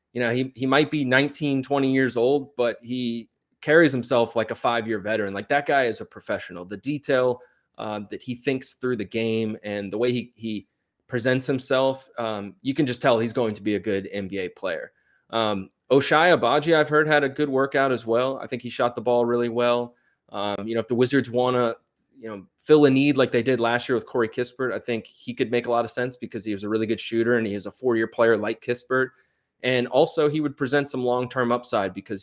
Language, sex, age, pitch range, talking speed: English, male, 20-39, 110-135 Hz, 235 wpm